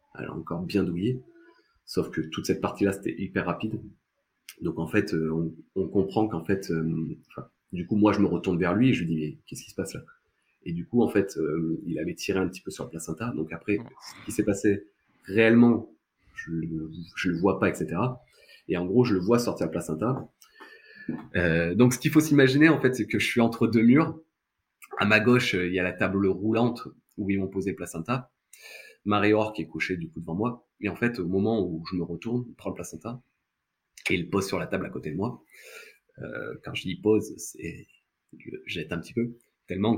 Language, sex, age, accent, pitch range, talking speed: French, male, 30-49, French, 90-120 Hz, 230 wpm